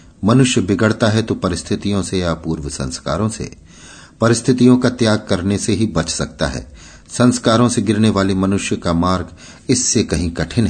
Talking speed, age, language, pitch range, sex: 165 wpm, 50-69, Hindi, 80-110 Hz, male